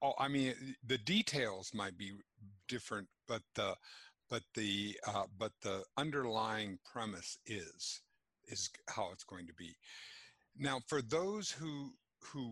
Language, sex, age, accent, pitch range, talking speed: English, male, 50-69, American, 110-145 Hz, 140 wpm